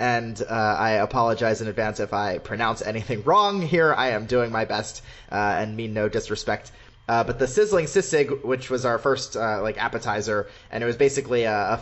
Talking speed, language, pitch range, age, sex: 205 wpm, English, 110-130 Hz, 30-49, male